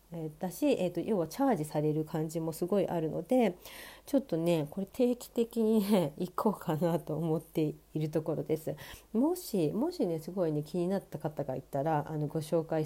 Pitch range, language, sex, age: 150-195 Hz, Japanese, female, 40-59